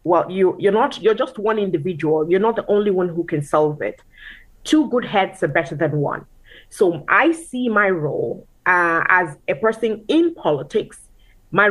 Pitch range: 165-210 Hz